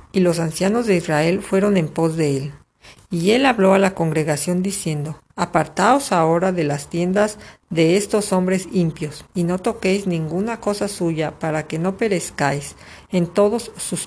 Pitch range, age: 155-195 Hz, 50-69